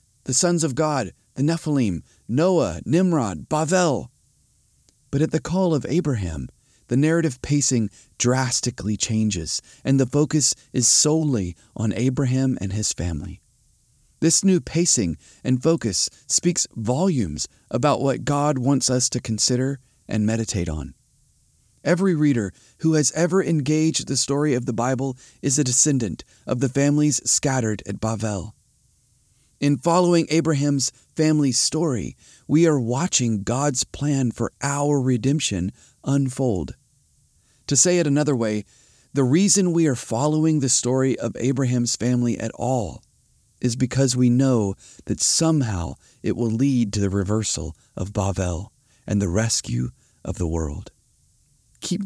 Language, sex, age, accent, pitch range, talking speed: English, male, 40-59, American, 105-145 Hz, 135 wpm